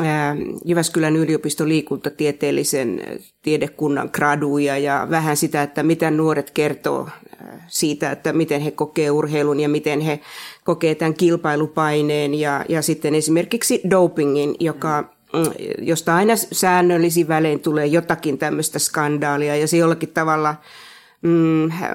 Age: 30-49